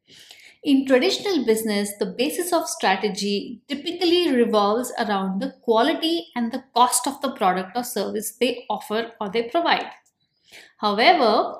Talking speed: 135 wpm